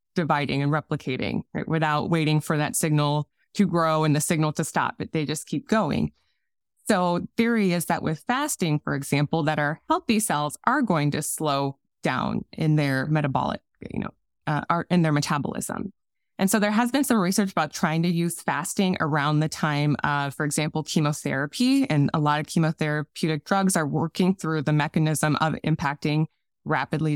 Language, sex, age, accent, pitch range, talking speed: English, female, 20-39, American, 150-190 Hz, 175 wpm